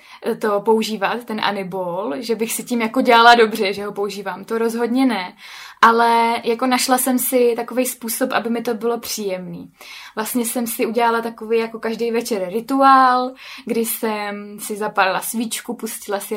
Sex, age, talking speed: female, 20-39, 165 wpm